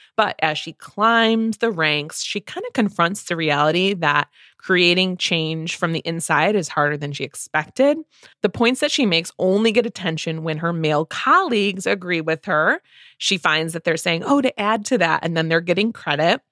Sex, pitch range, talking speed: female, 160-210 Hz, 195 wpm